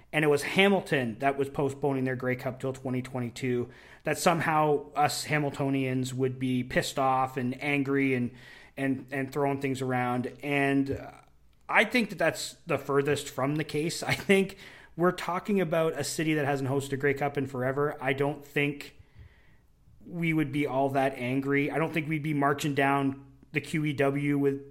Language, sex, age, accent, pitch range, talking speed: English, male, 30-49, American, 130-150 Hz, 170 wpm